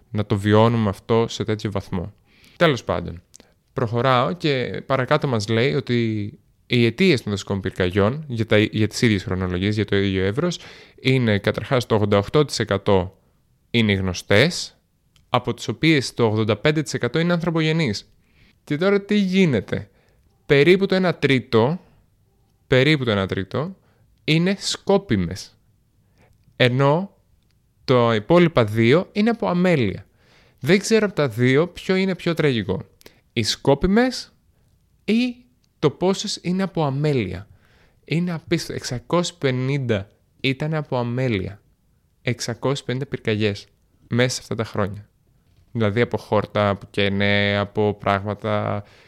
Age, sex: 20-39, male